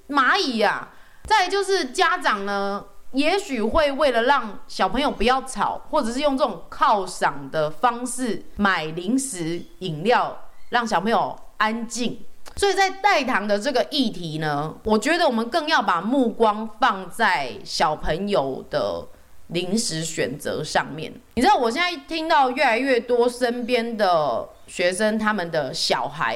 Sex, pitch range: female, 190-265 Hz